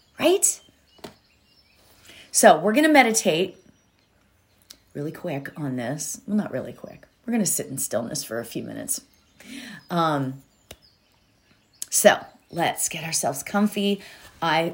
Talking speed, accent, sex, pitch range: 125 wpm, American, female, 150-230 Hz